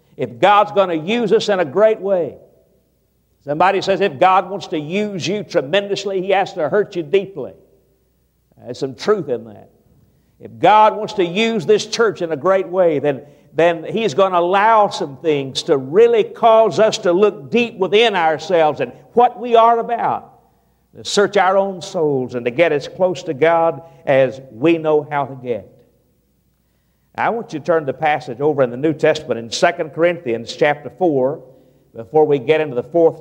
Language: English